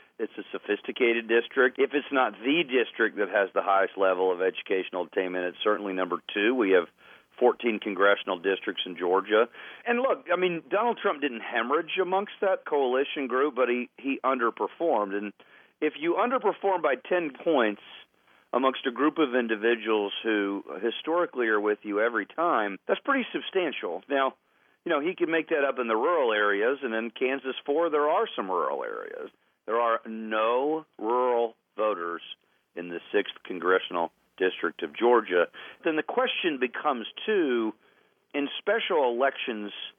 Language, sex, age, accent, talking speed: English, male, 40-59, American, 160 wpm